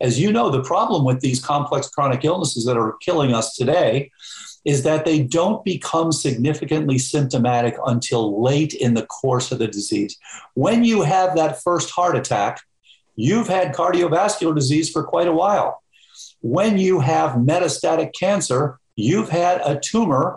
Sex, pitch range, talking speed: male, 125-160 Hz, 160 wpm